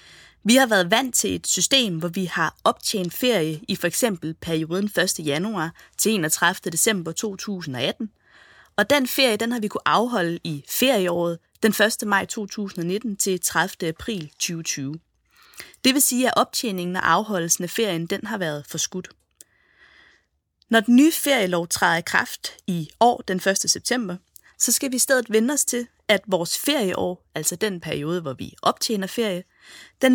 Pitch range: 170-230 Hz